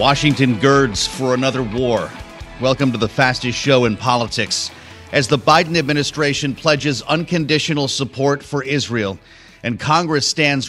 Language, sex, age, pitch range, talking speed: English, male, 30-49, 115-145 Hz, 135 wpm